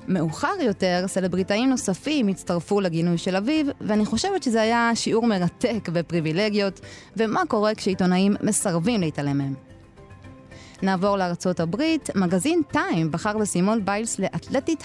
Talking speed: 120 wpm